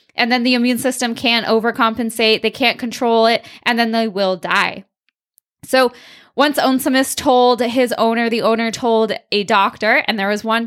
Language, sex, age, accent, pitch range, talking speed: English, female, 10-29, American, 195-245 Hz, 175 wpm